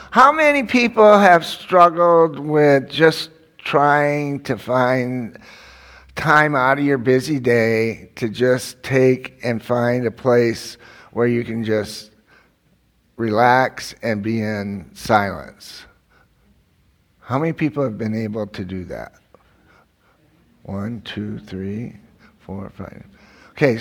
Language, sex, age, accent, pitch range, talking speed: English, male, 60-79, American, 115-140 Hz, 120 wpm